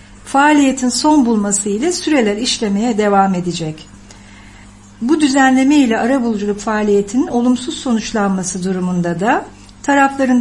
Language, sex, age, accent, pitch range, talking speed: English, female, 60-79, Turkish, 195-275 Hz, 105 wpm